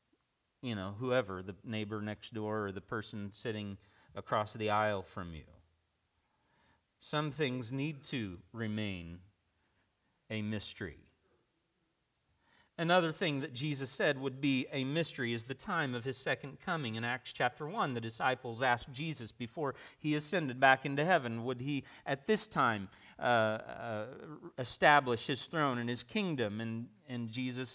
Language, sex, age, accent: English, male, 40-59, American